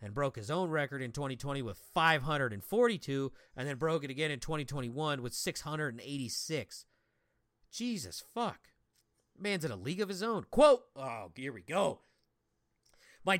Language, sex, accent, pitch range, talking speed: English, male, American, 120-165 Hz, 150 wpm